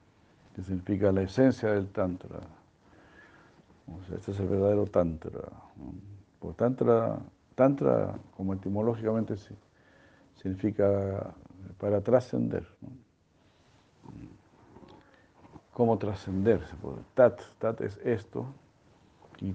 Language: Spanish